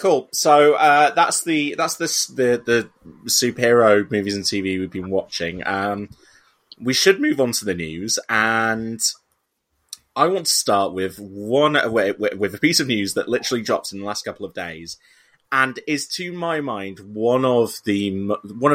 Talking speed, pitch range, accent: 175 wpm, 95-115 Hz, British